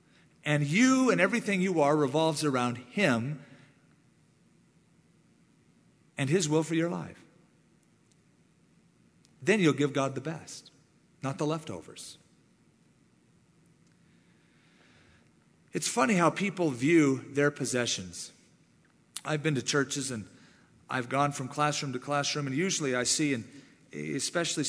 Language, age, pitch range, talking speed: English, 40-59, 135-175 Hz, 115 wpm